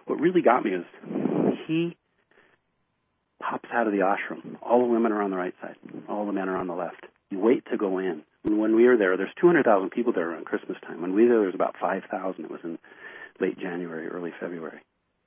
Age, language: 40-59, English